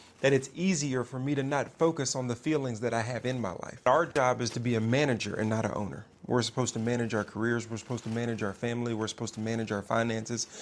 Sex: male